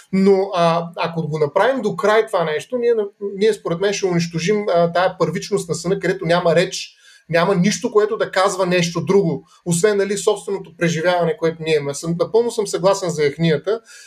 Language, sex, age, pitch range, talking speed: Bulgarian, male, 30-49, 155-195 Hz, 175 wpm